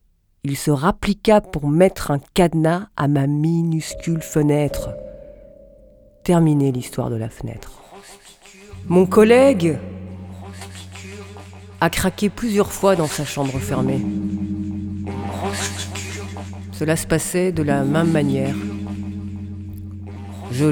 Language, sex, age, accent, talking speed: French, female, 40-59, French, 100 wpm